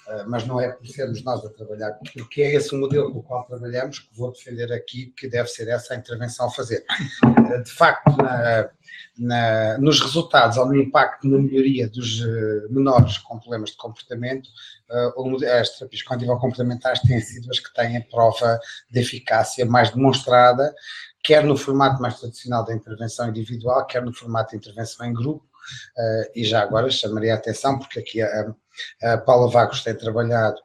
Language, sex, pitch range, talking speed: Portuguese, male, 115-130 Hz, 170 wpm